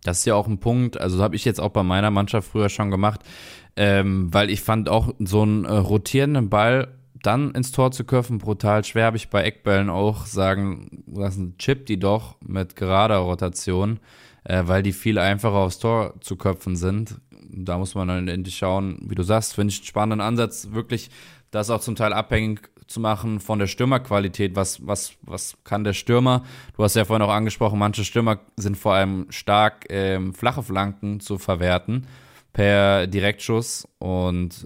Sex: male